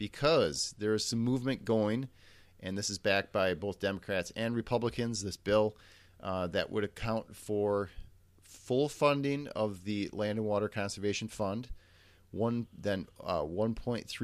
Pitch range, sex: 90-110 Hz, male